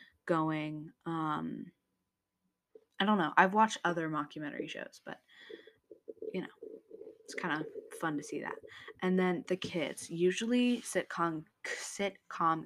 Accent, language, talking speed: American, English, 130 wpm